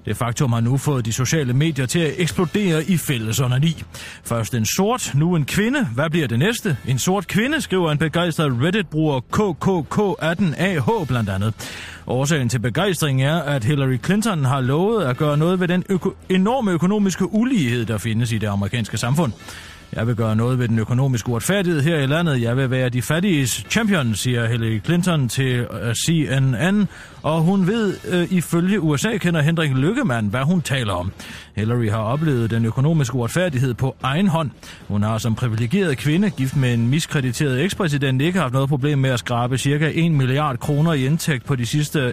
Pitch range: 115-165 Hz